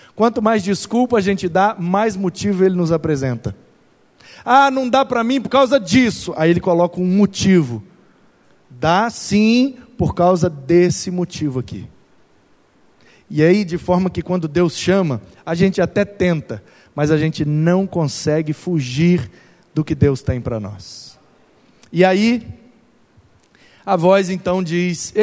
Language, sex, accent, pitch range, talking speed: Portuguese, male, Brazilian, 155-205 Hz, 145 wpm